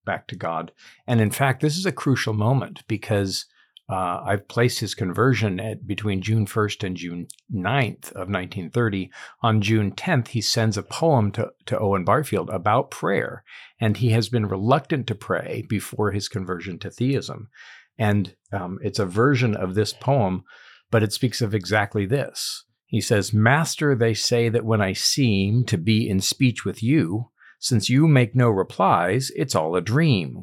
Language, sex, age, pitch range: English, male, 50-69, 100-130 Hz